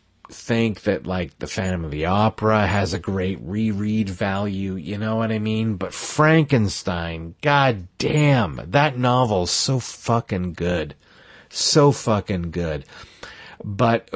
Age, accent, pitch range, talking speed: 40-59, American, 95-115 Hz, 130 wpm